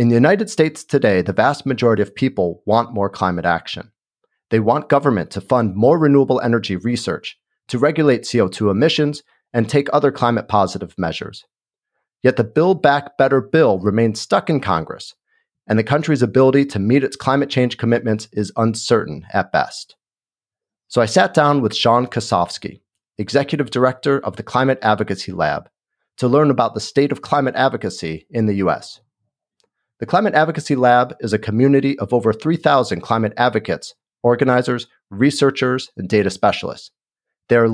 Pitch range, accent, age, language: 110-140 Hz, American, 40-59, English